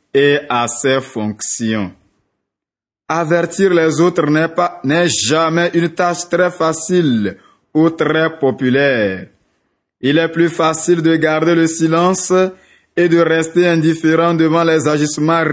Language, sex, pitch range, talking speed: French, male, 150-170 Hz, 120 wpm